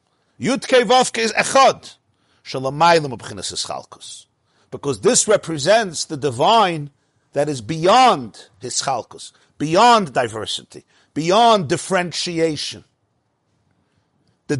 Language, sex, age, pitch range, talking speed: English, male, 50-69, 155-215 Hz, 85 wpm